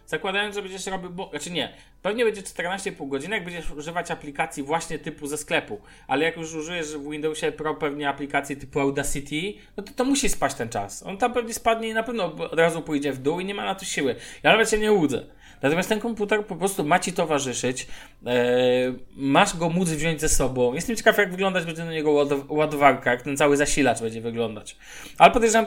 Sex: male